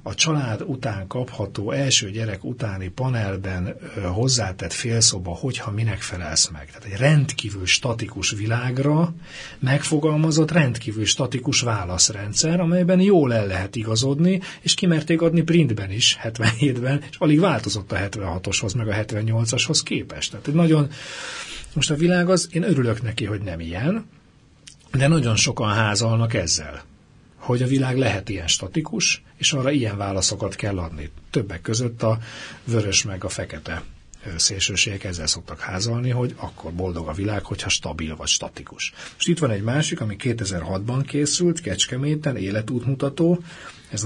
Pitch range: 95-140 Hz